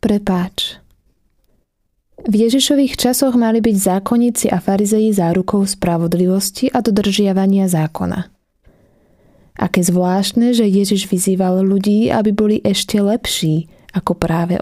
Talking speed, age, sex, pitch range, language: 110 wpm, 20-39, female, 180-210 Hz, Slovak